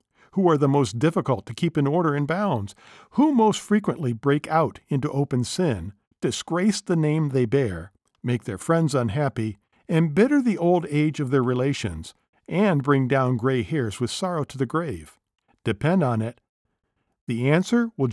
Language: English